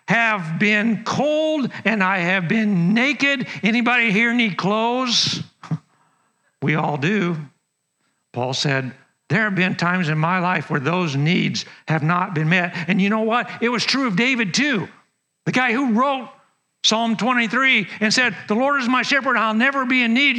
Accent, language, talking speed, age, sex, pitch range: American, English, 175 wpm, 60-79, male, 180-245 Hz